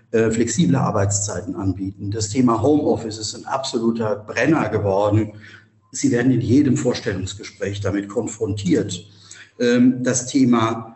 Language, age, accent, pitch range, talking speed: German, 50-69, German, 110-150 Hz, 110 wpm